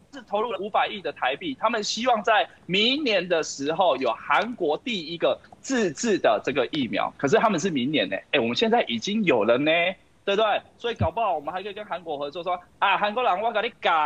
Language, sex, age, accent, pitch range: Chinese, male, 20-39, native, 155-235 Hz